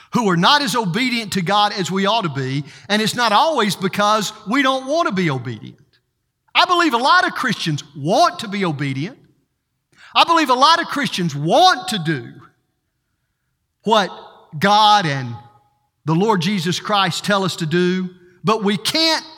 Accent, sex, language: American, male, English